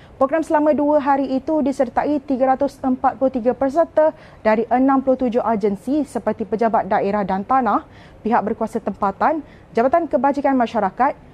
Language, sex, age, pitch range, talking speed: Malay, female, 30-49, 240-285 Hz, 115 wpm